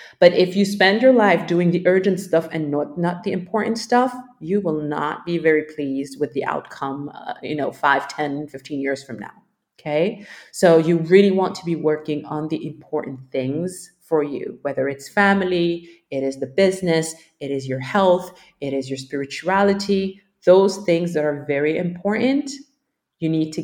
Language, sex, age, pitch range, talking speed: English, female, 30-49, 150-195 Hz, 185 wpm